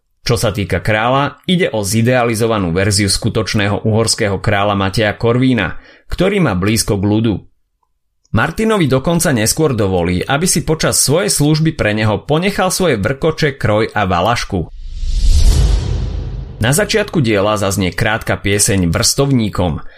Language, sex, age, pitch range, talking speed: Slovak, male, 30-49, 95-130 Hz, 125 wpm